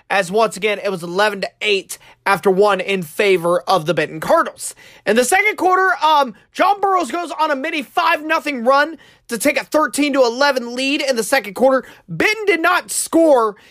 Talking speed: 195 wpm